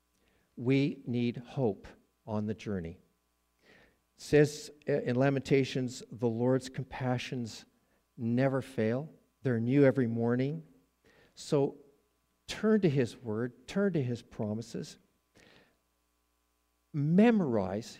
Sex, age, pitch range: male, 50-69, 100-145 Hz